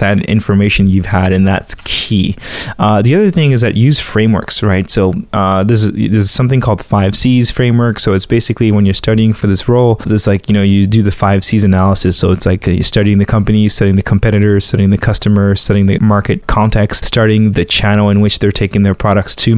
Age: 20-39